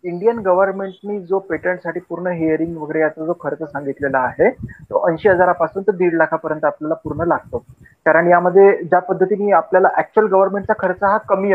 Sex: male